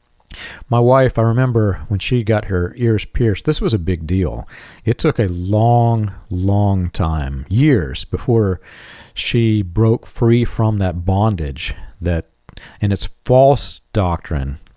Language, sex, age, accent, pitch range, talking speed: English, male, 40-59, American, 90-115 Hz, 140 wpm